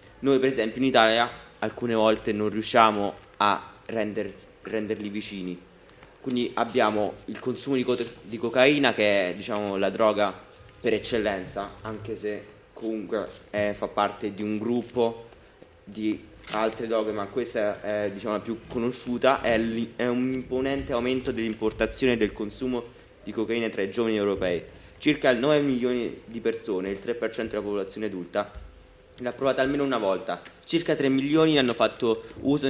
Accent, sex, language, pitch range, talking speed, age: native, male, Italian, 105-125 Hz, 155 wpm, 20-39